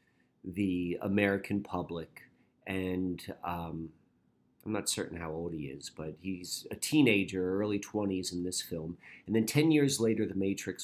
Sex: male